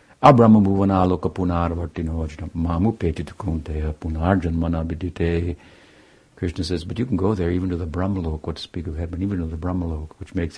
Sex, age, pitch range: male, 60-79, 85-100 Hz